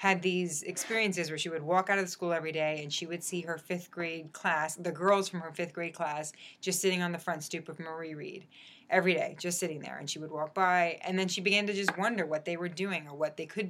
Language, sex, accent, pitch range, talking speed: English, female, American, 165-195 Hz, 265 wpm